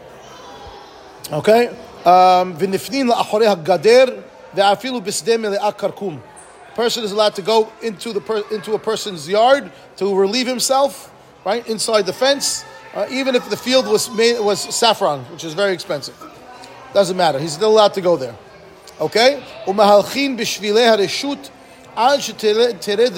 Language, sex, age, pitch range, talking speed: English, male, 30-49, 190-240 Hz, 110 wpm